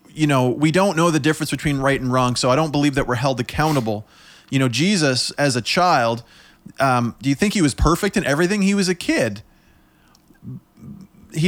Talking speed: 205 wpm